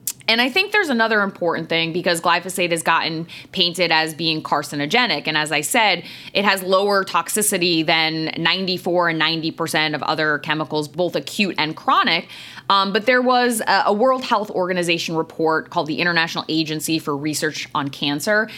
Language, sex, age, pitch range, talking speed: English, female, 20-39, 160-205 Hz, 170 wpm